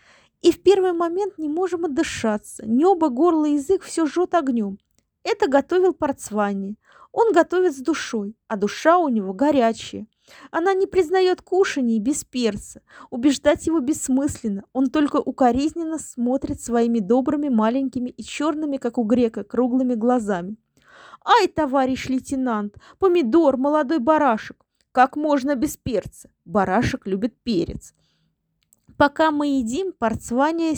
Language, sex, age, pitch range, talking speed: Russian, female, 20-39, 240-335 Hz, 125 wpm